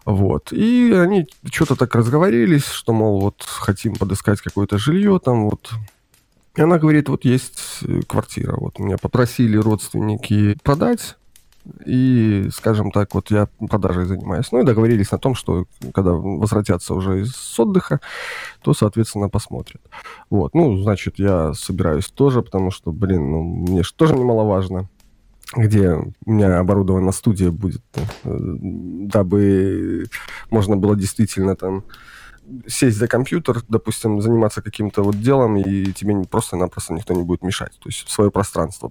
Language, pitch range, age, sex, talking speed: Russian, 95-125 Hz, 20-39, male, 140 wpm